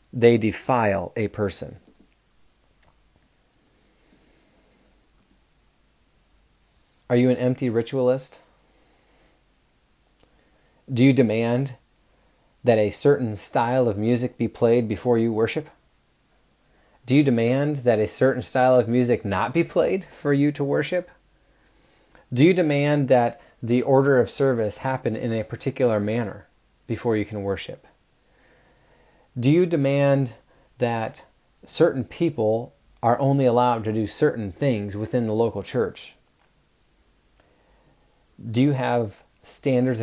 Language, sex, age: English, male, 30-49